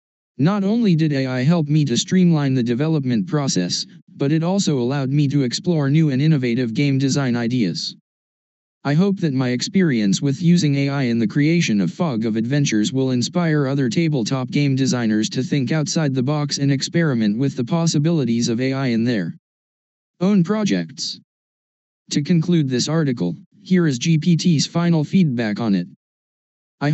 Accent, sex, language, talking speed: American, male, English, 165 wpm